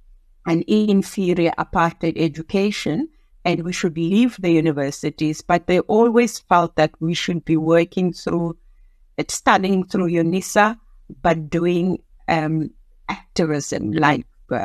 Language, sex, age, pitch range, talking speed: English, female, 60-79, 165-205 Hz, 115 wpm